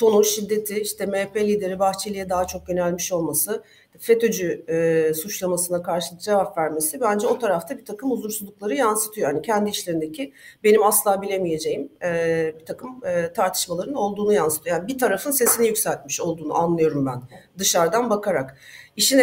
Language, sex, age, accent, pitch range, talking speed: Turkish, female, 40-59, native, 180-215 Hz, 145 wpm